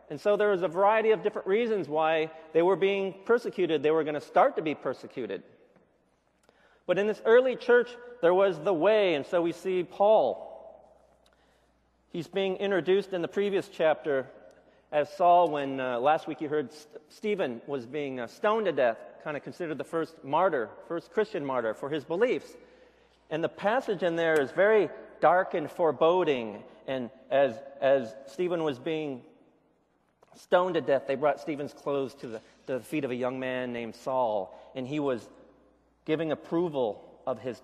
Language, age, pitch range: Korean, 40-59, 135-195 Hz